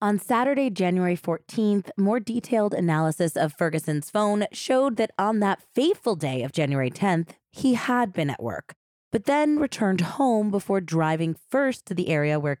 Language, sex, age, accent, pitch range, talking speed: English, female, 20-39, American, 155-215 Hz, 165 wpm